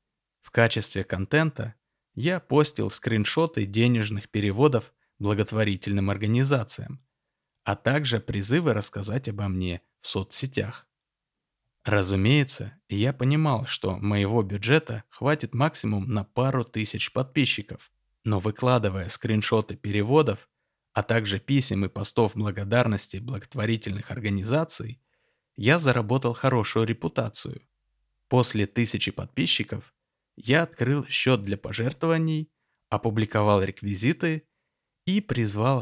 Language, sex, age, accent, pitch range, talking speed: Russian, male, 20-39, native, 100-130 Hz, 95 wpm